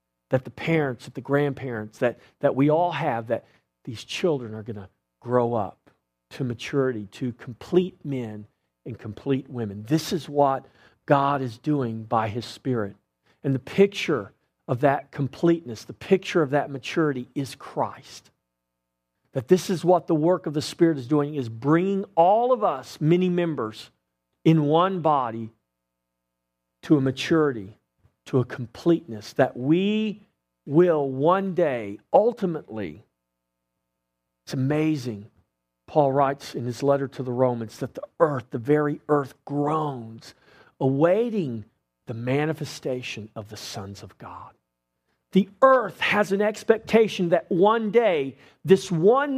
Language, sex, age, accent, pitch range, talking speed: English, male, 50-69, American, 115-175 Hz, 140 wpm